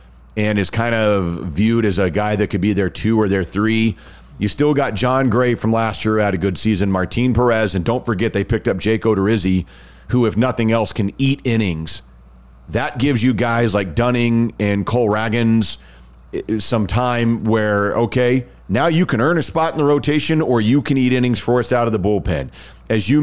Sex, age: male, 40-59